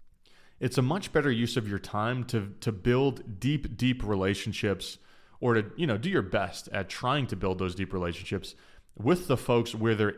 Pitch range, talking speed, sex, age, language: 95-115 Hz, 195 wpm, male, 20-39, English